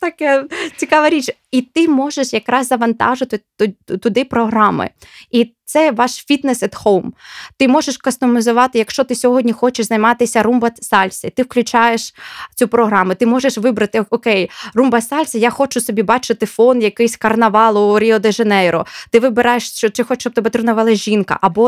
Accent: native